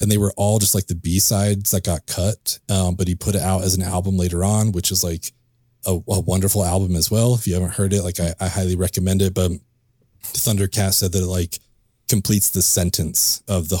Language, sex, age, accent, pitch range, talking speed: English, male, 30-49, American, 90-105 Hz, 230 wpm